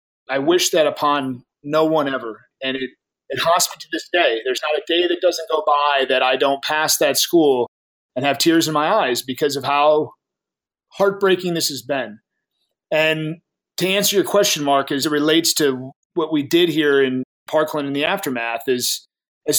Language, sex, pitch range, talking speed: English, male, 135-170 Hz, 195 wpm